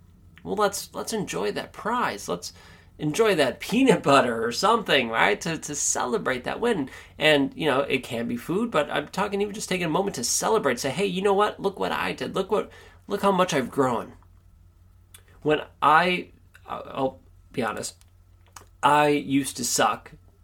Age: 30-49